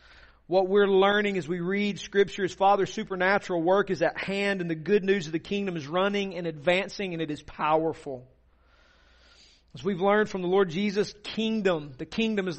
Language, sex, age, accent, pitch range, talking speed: Russian, male, 40-59, American, 150-205 Hz, 190 wpm